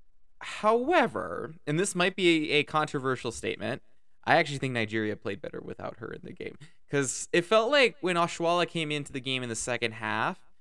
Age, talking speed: 20-39, 185 wpm